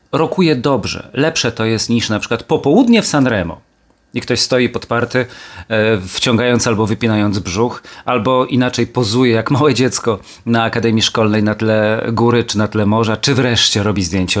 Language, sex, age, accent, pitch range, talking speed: Polish, male, 40-59, native, 100-130 Hz, 160 wpm